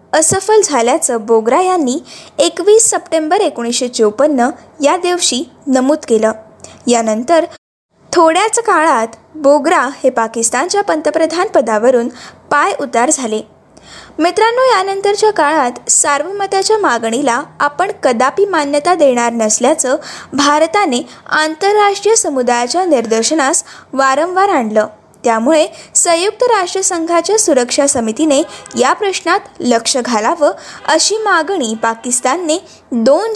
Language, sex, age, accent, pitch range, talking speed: Marathi, female, 20-39, native, 250-370 Hz, 95 wpm